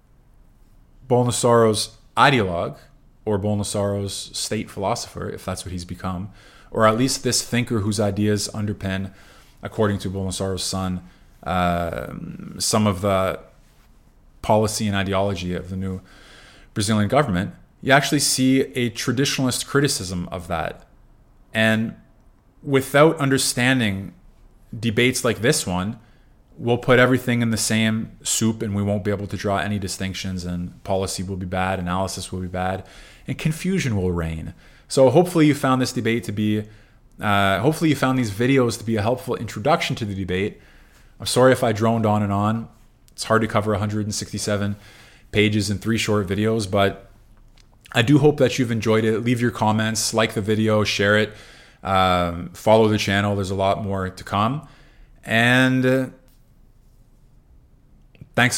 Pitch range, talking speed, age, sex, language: 100-125 Hz, 150 wpm, 20-39, male, English